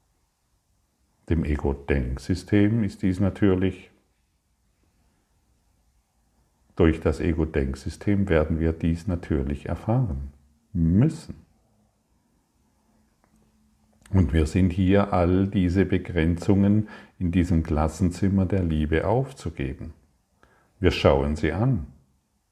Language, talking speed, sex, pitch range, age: German, 85 wpm, male, 80-95 Hz, 50-69